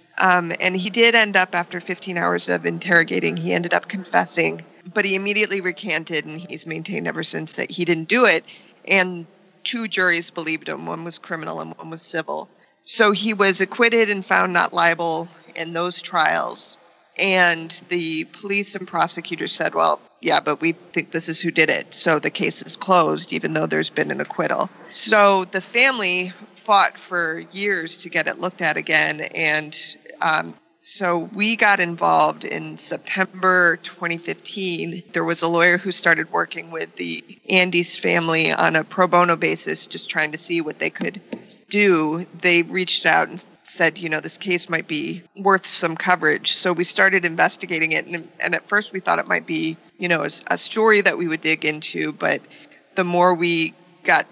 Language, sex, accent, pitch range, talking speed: English, female, American, 165-190 Hz, 185 wpm